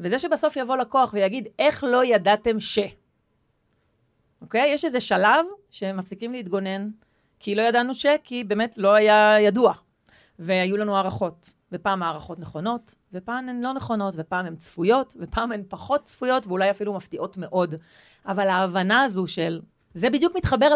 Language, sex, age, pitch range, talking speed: Hebrew, female, 30-49, 190-255 Hz, 155 wpm